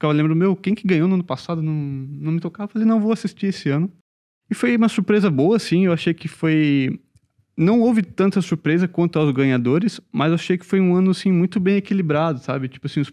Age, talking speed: 20-39, 240 wpm